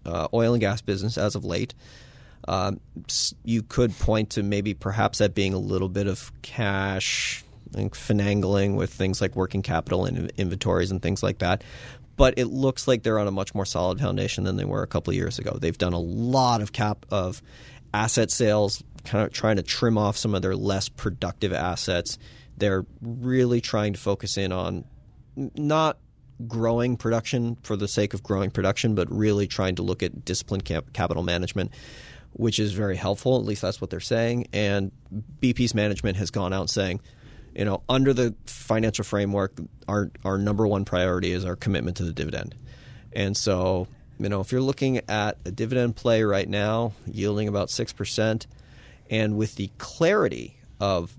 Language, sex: English, male